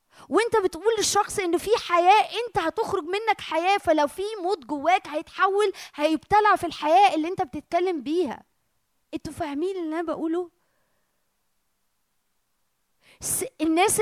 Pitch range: 300-370 Hz